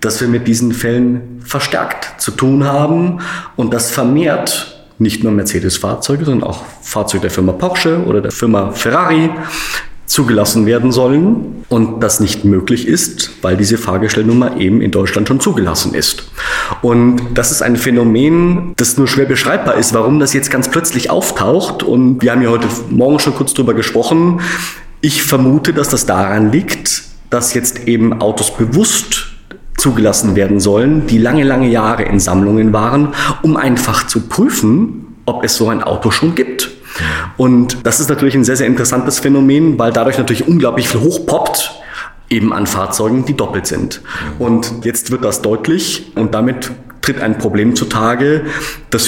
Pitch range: 110-140 Hz